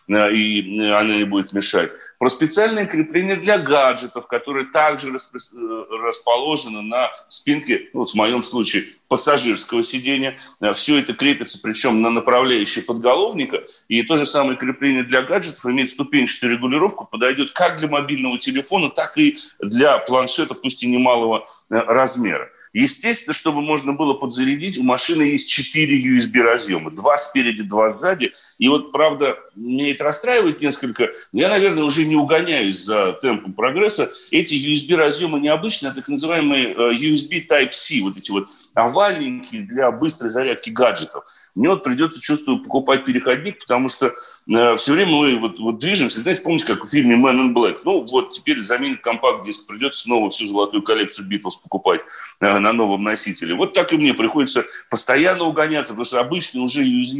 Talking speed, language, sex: 150 wpm, Russian, male